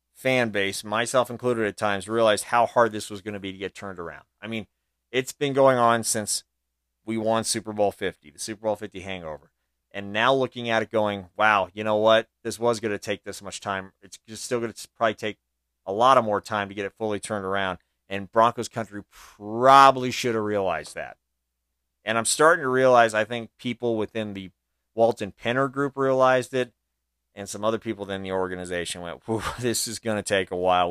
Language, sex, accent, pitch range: English, male, American, 95-125 Hz